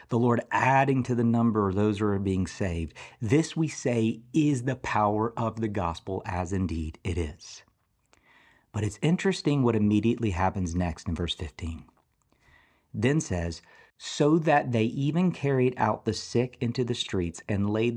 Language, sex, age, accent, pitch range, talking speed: English, male, 40-59, American, 100-130 Hz, 165 wpm